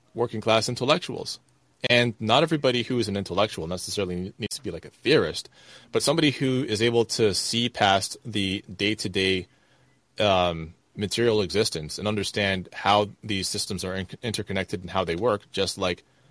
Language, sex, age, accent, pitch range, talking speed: English, male, 30-49, American, 95-125 Hz, 160 wpm